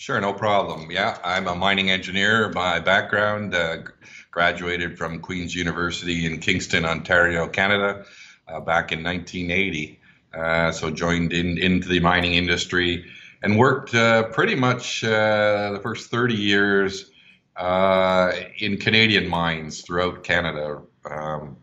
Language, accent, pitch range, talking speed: English, American, 80-95 Hz, 135 wpm